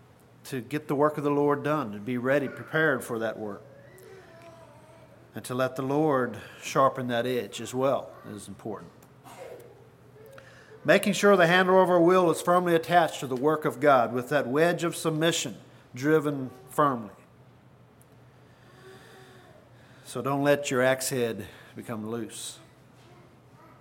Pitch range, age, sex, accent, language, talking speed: 125-150 Hz, 50-69, male, American, English, 145 wpm